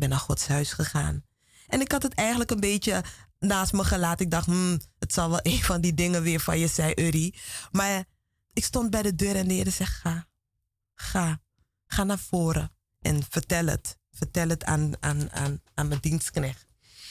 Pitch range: 125-190 Hz